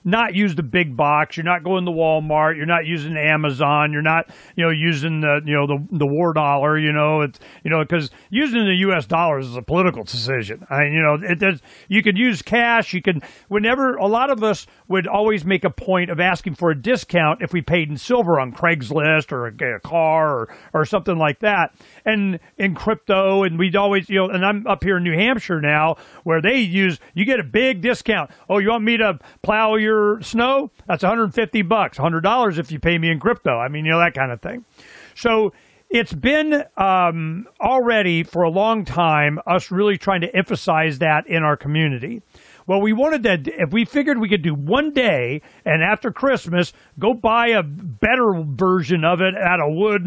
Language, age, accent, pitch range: English, 40-59, American, 160-205 Hz